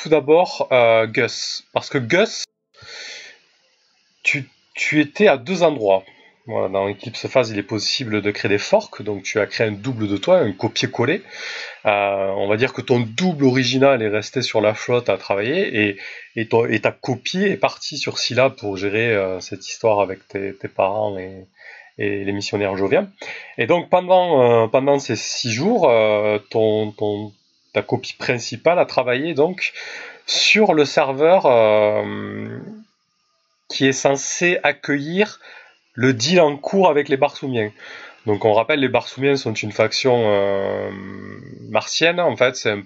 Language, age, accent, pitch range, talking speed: French, 30-49, French, 105-140 Hz, 160 wpm